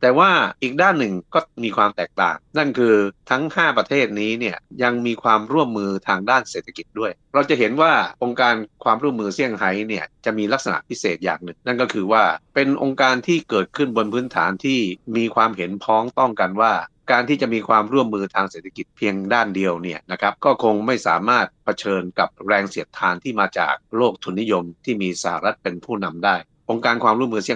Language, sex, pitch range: Thai, male, 95-120 Hz